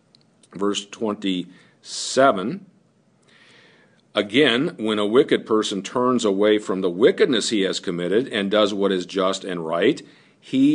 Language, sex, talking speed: English, male, 130 wpm